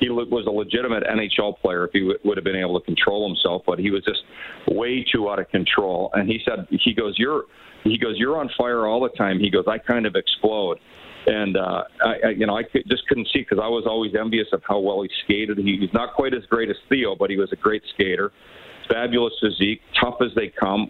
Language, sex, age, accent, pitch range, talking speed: English, male, 40-59, American, 105-120 Hz, 240 wpm